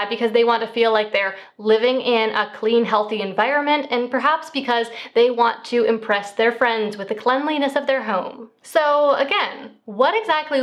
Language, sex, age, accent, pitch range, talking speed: English, female, 20-39, American, 210-270 Hz, 180 wpm